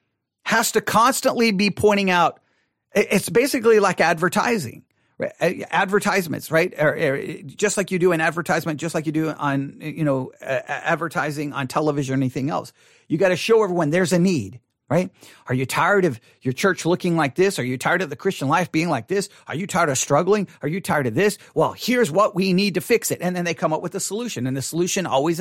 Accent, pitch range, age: American, 145-195 Hz, 40-59